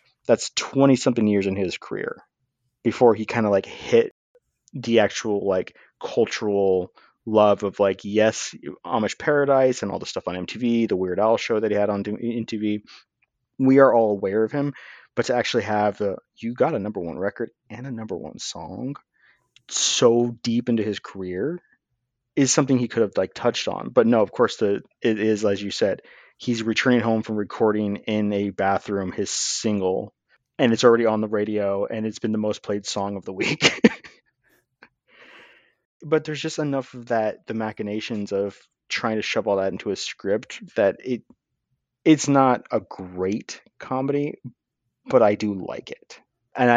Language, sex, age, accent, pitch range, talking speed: English, male, 30-49, American, 100-125 Hz, 180 wpm